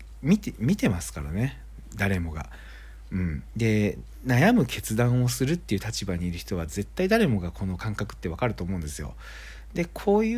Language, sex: Japanese, male